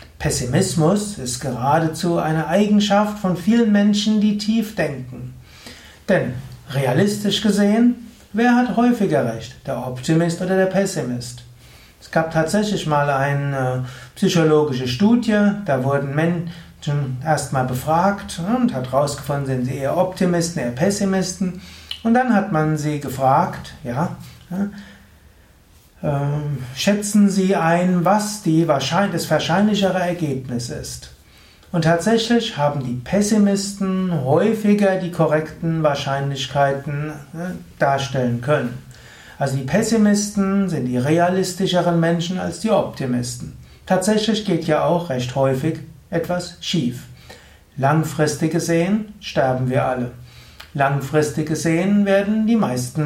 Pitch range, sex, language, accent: 135-195 Hz, male, German, German